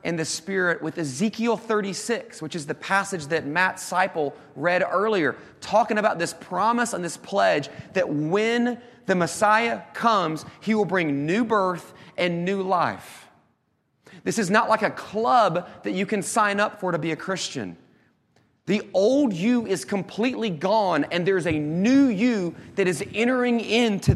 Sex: male